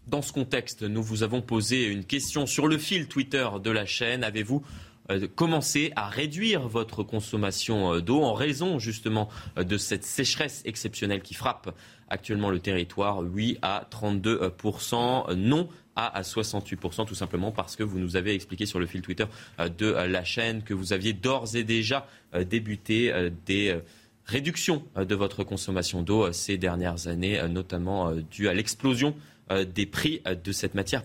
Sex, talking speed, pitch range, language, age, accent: male, 155 wpm, 100-125 Hz, French, 20-39, French